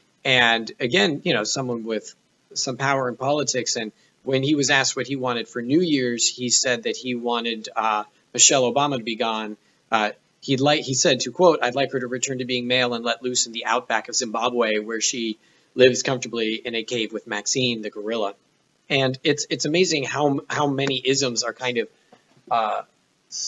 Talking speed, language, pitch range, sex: 200 wpm, English, 115-145 Hz, male